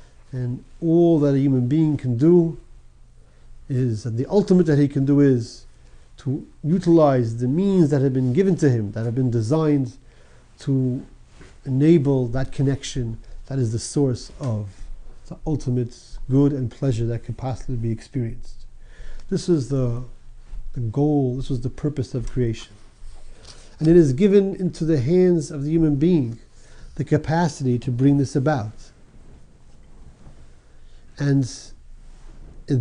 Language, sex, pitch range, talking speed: English, male, 115-150 Hz, 145 wpm